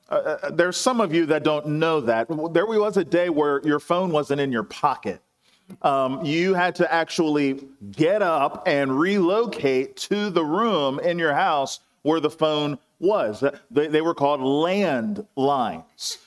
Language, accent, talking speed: English, American, 160 wpm